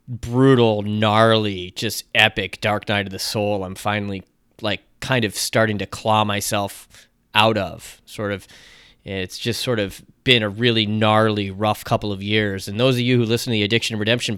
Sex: male